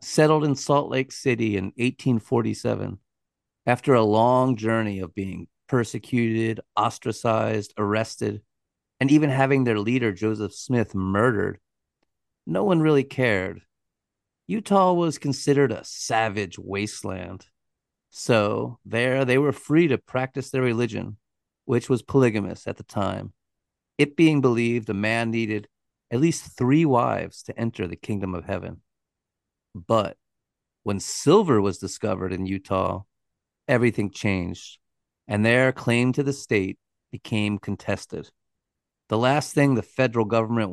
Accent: American